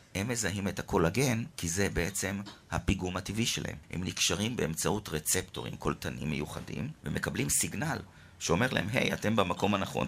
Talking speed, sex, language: 150 wpm, male, Hebrew